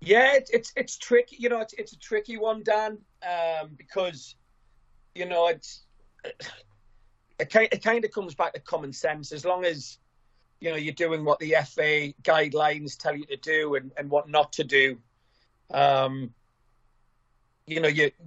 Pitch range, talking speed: 140-170 Hz, 165 wpm